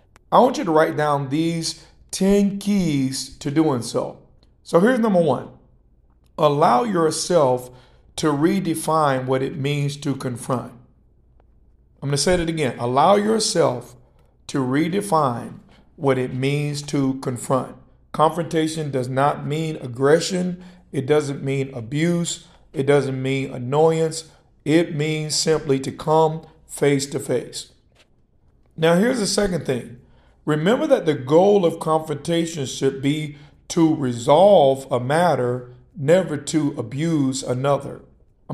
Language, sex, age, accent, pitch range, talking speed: English, male, 50-69, American, 135-165 Hz, 130 wpm